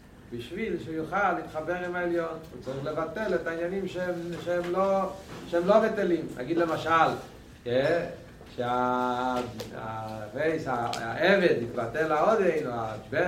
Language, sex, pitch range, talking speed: Hebrew, male, 150-180 Hz, 100 wpm